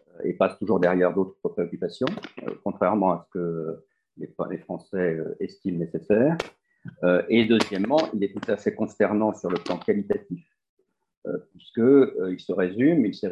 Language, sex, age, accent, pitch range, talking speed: French, male, 50-69, French, 90-110 Hz, 125 wpm